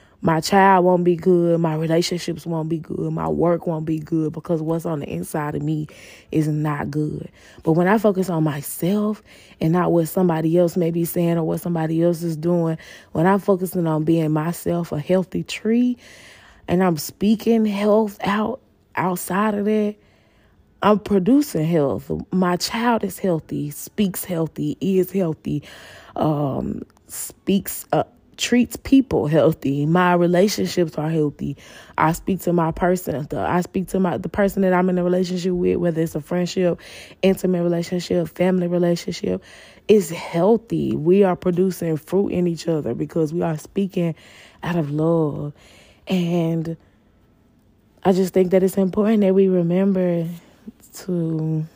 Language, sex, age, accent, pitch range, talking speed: English, female, 20-39, American, 155-185 Hz, 155 wpm